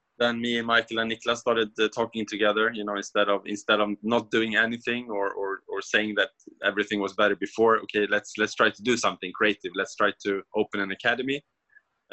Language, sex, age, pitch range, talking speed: English, male, 20-39, 95-110 Hz, 215 wpm